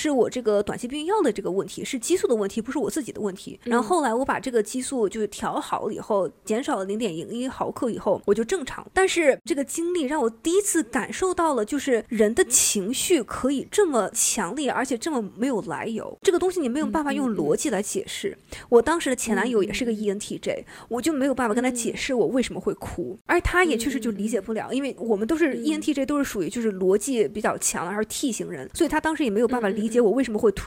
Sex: female